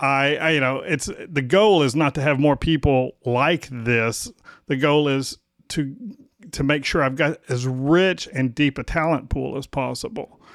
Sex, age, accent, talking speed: male, 40-59, American, 190 wpm